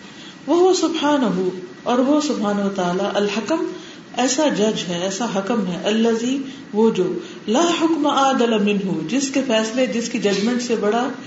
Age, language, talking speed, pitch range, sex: 50-69, Urdu, 130 wpm, 185-245 Hz, female